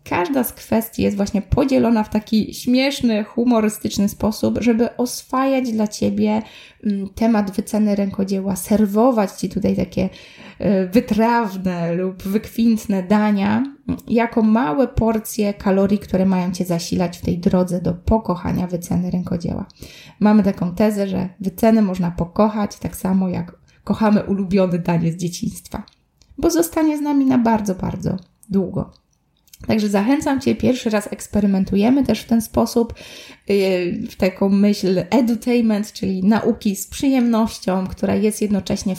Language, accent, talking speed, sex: Polish, native, 130 wpm, female